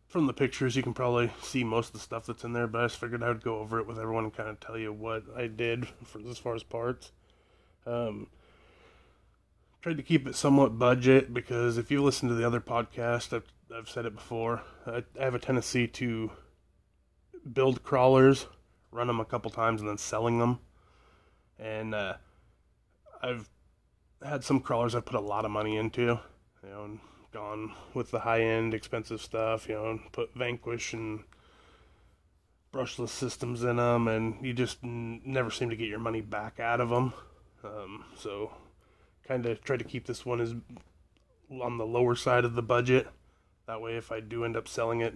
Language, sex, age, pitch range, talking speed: English, male, 20-39, 110-120 Hz, 195 wpm